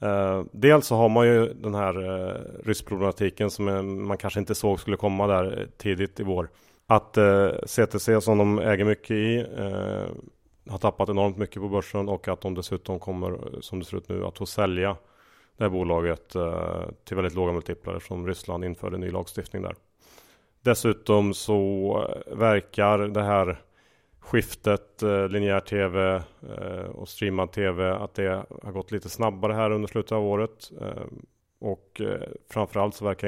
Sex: male